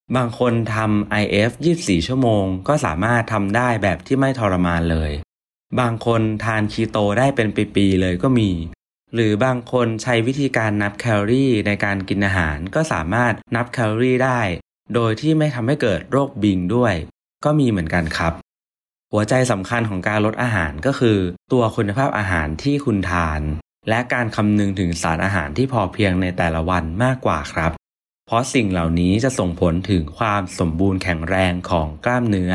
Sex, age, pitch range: male, 20-39, 90-115 Hz